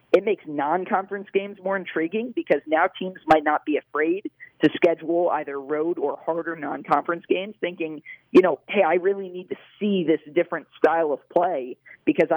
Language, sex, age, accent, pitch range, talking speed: English, male, 40-59, American, 160-195 Hz, 175 wpm